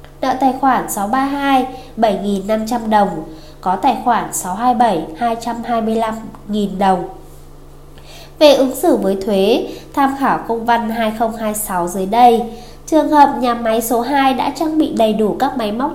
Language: Vietnamese